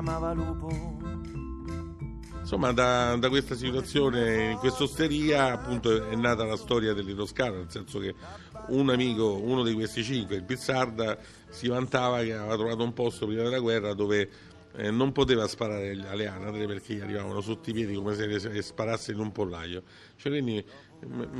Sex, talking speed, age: male, 155 wpm, 50-69